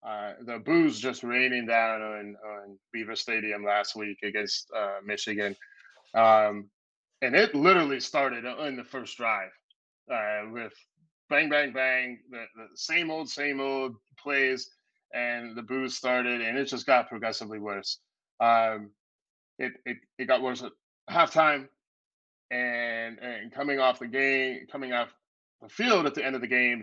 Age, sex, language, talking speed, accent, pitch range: 20-39, male, English, 155 wpm, American, 105-130 Hz